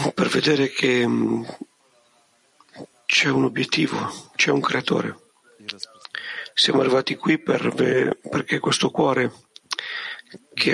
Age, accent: 50-69, native